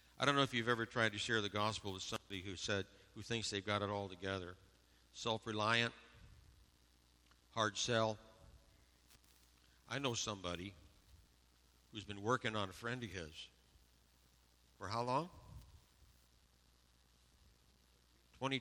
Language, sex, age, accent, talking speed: English, male, 60-79, American, 130 wpm